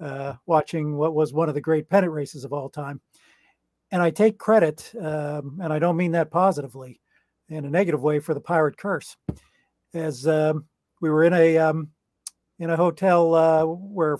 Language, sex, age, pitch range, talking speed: English, male, 50-69, 150-170 Hz, 185 wpm